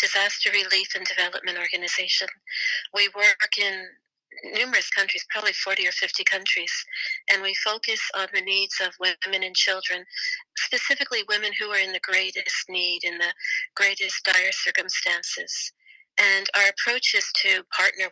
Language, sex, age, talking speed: English, female, 40-59, 145 wpm